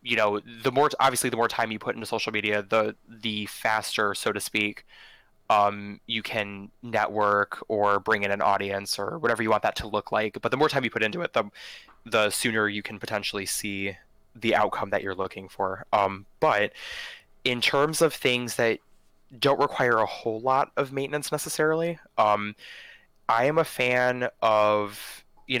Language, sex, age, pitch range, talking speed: English, male, 20-39, 105-125 Hz, 185 wpm